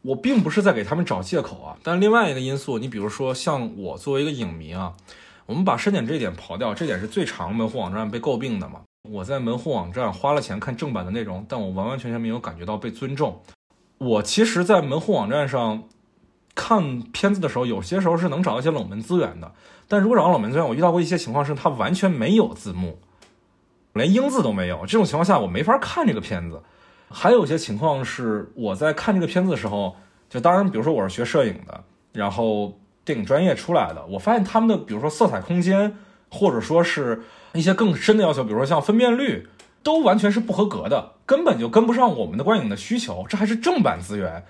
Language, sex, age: Chinese, male, 20-39